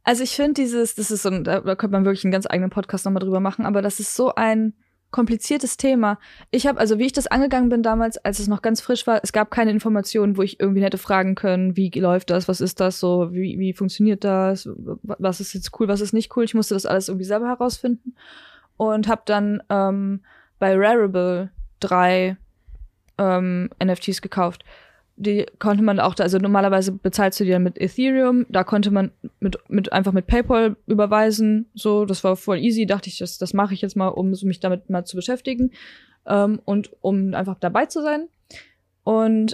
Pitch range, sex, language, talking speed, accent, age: 190-220 Hz, female, German, 205 wpm, German, 20-39